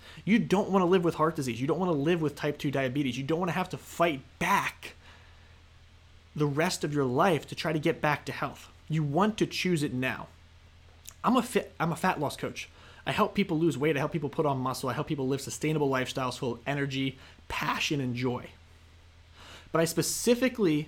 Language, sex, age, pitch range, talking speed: English, male, 30-49, 125-165 Hz, 215 wpm